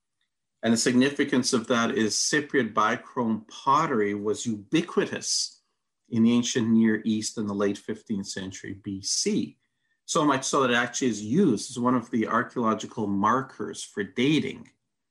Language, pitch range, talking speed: English, 105-135 Hz, 150 wpm